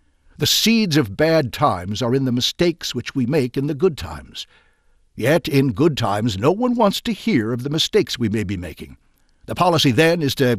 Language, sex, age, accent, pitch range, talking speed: English, male, 60-79, American, 110-150 Hz, 210 wpm